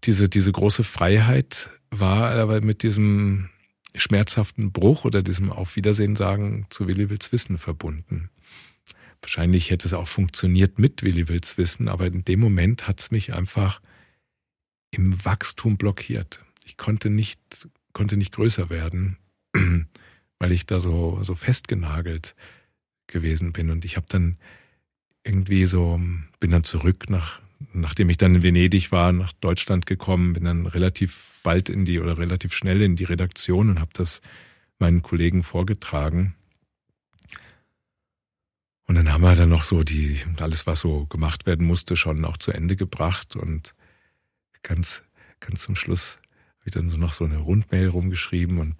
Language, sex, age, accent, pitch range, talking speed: German, male, 50-69, German, 85-100 Hz, 155 wpm